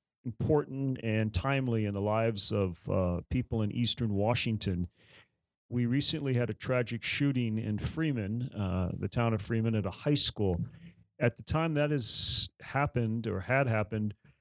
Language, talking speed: English, 160 wpm